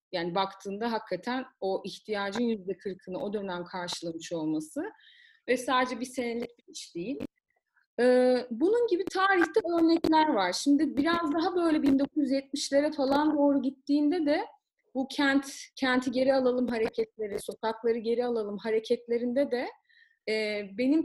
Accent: native